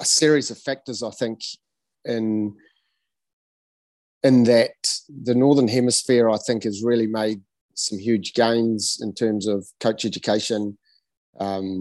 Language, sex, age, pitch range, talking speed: English, male, 30-49, 100-115 Hz, 130 wpm